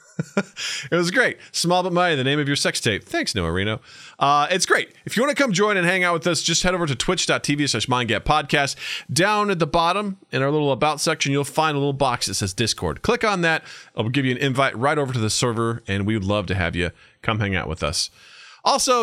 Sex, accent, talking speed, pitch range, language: male, American, 250 wpm, 105-175 Hz, English